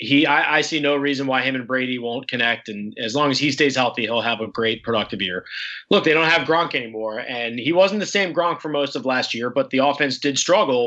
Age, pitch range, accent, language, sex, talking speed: 20-39, 120-145 Hz, American, English, male, 260 wpm